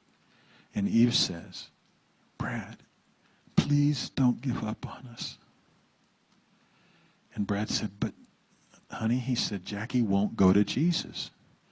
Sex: male